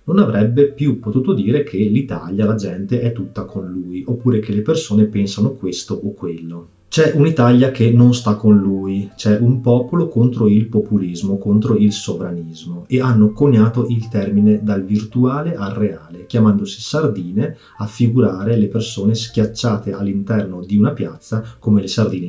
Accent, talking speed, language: native, 160 wpm, Italian